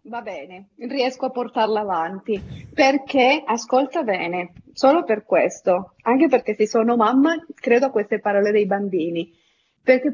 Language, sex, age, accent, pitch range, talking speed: Italian, female, 40-59, native, 195-280 Hz, 140 wpm